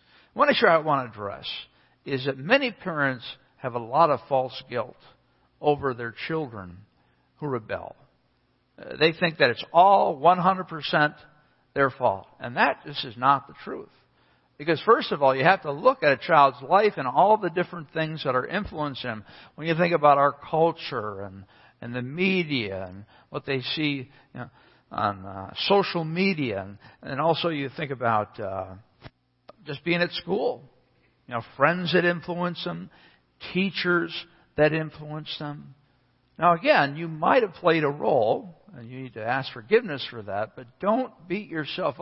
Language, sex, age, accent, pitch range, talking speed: English, male, 60-79, American, 125-175 Hz, 165 wpm